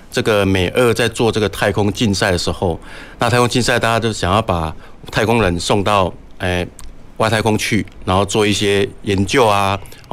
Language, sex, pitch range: Chinese, male, 95-115 Hz